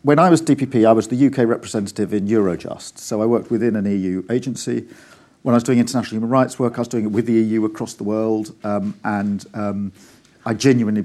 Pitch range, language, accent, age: 105-125 Hz, English, British, 50-69